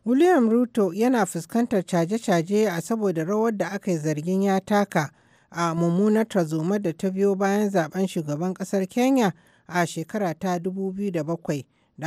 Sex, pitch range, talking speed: male, 170-215 Hz, 150 wpm